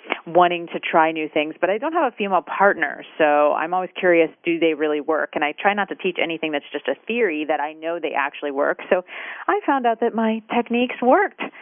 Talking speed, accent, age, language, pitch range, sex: 235 wpm, American, 40-59, English, 150-210 Hz, female